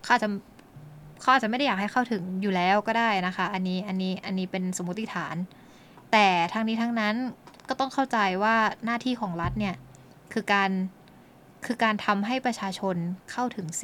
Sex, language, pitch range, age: female, Thai, 185-225 Hz, 20-39